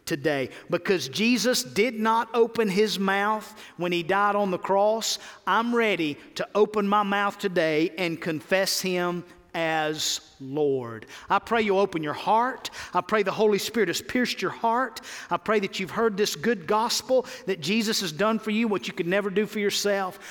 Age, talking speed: 50-69, 185 wpm